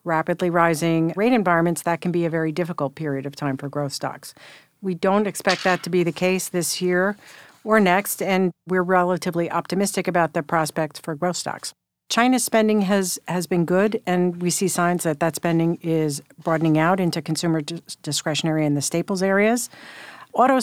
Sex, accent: female, American